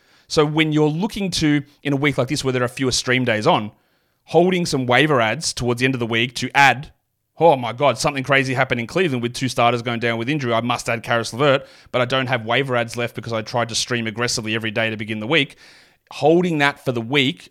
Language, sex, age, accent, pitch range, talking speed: English, male, 30-49, Australian, 120-145 Hz, 250 wpm